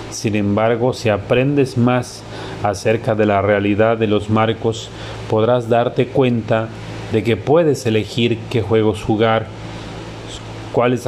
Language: Spanish